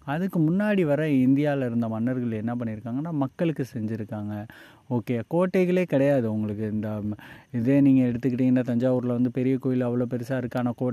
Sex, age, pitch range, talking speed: male, 30-49, 110-130 Hz, 145 wpm